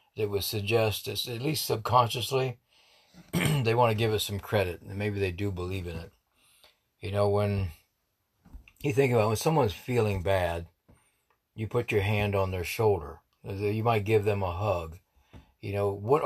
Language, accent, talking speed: English, American, 175 wpm